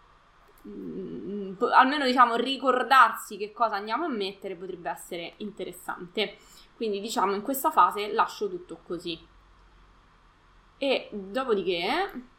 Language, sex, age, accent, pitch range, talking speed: Italian, female, 20-39, native, 185-295 Hz, 100 wpm